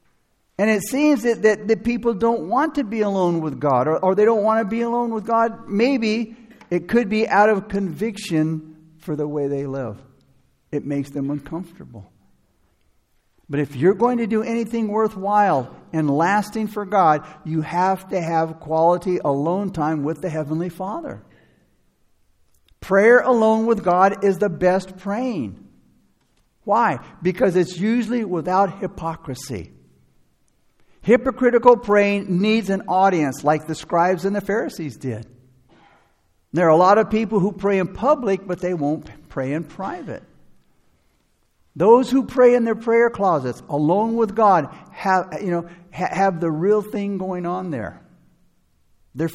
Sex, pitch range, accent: male, 155-215 Hz, American